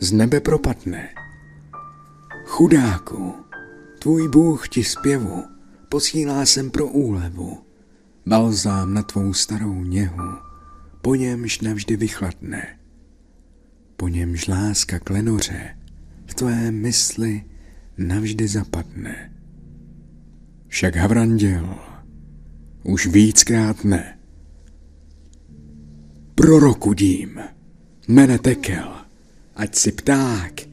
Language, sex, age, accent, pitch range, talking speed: Czech, male, 50-69, native, 85-120 Hz, 80 wpm